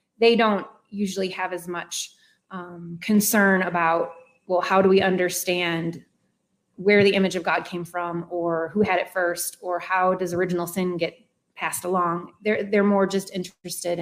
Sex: female